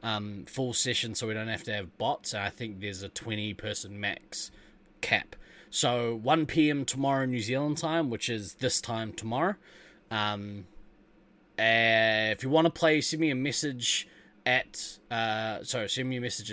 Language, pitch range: English, 105-125 Hz